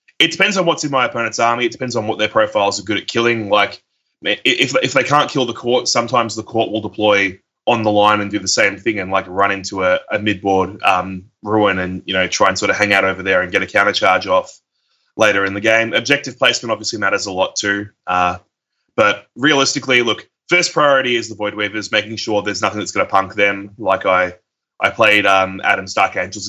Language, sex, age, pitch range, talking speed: English, male, 20-39, 95-110 Hz, 235 wpm